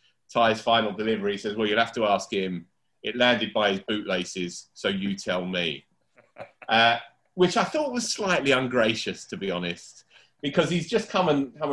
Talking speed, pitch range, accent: 185 wpm, 105-150 Hz, British